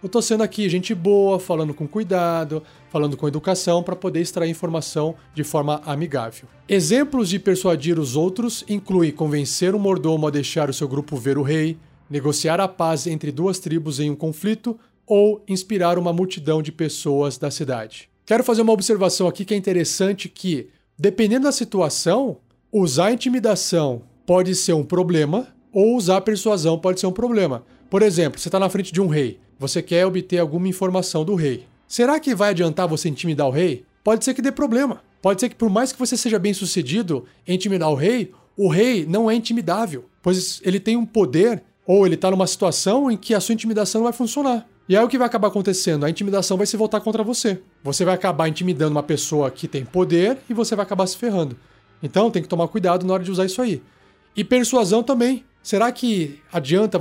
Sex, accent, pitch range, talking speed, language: male, Brazilian, 160-215 Hz, 200 wpm, Portuguese